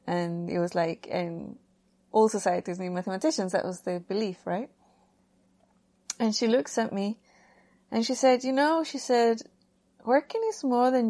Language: English